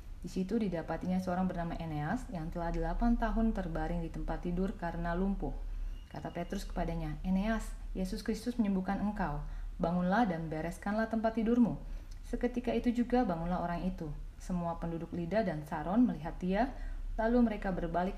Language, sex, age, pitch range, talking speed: Indonesian, female, 30-49, 165-200 Hz, 150 wpm